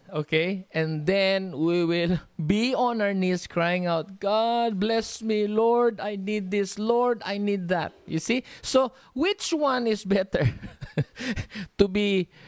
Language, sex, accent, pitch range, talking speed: English, male, Filipino, 145-210 Hz, 150 wpm